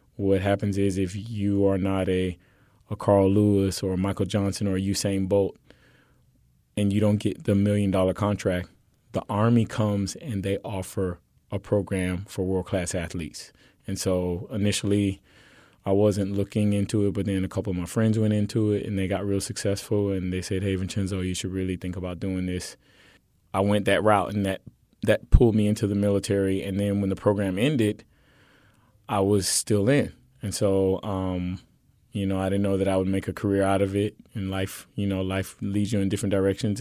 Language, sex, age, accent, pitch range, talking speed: English, male, 20-39, American, 95-105 Hz, 195 wpm